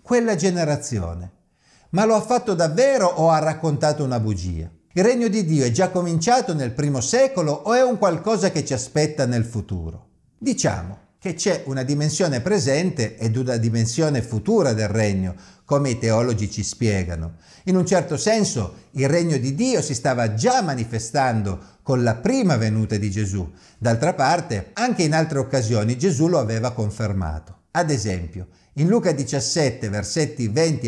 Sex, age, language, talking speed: male, 50-69, Italian, 160 wpm